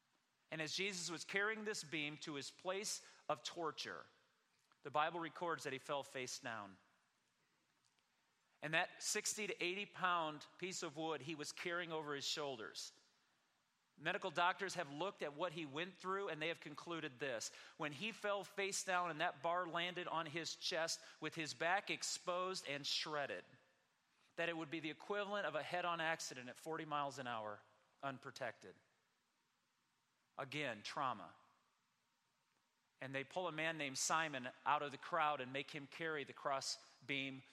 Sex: male